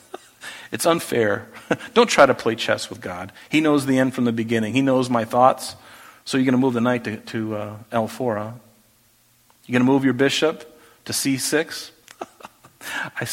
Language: English